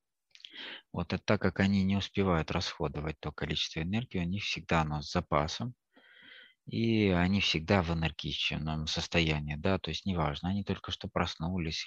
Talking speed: 145 wpm